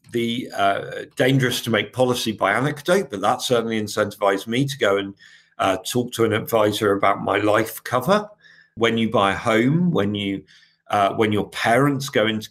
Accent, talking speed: British, 170 wpm